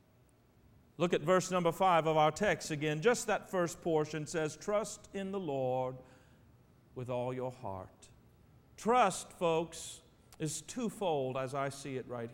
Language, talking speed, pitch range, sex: English, 150 wpm, 135-230 Hz, male